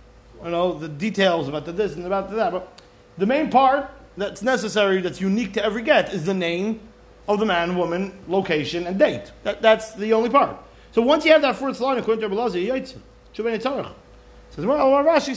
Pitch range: 170-240 Hz